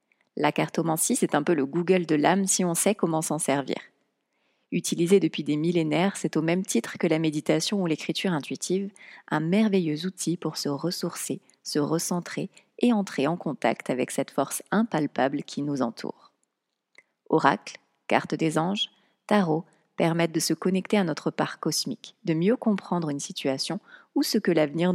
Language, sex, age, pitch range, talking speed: French, female, 30-49, 155-195 Hz, 170 wpm